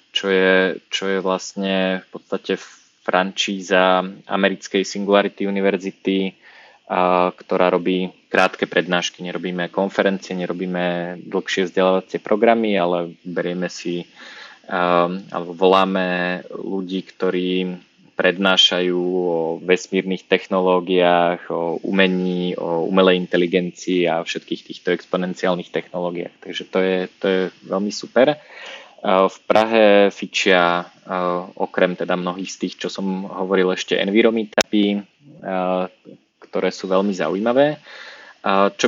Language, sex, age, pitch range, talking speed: Slovak, male, 20-39, 90-100 Hz, 105 wpm